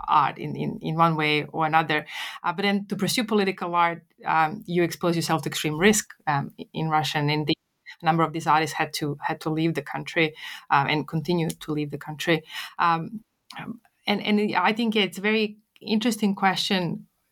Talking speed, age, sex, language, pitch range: 200 wpm, 30-49, female, English, 165-200 Hz